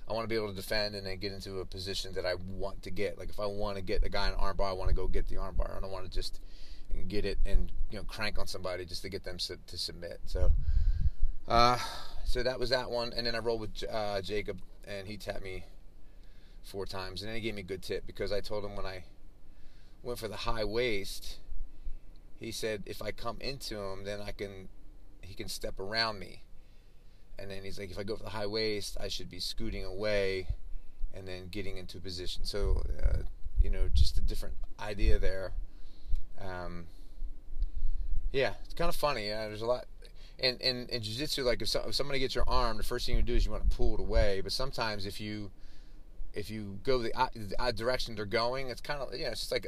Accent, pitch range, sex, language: American, 95-115 Hz, male, English